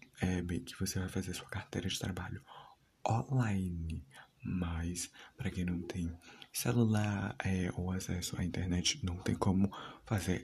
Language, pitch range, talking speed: Portuguese, 90-105 Hz, 150 wpm